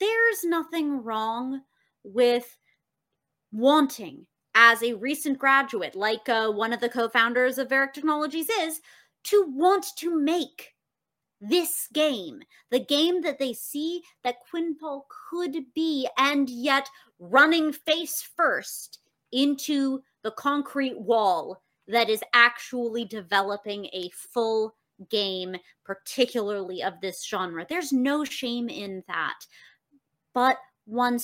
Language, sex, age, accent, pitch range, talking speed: English, female, 30-49, American, 230-340 Hz, 115 wpm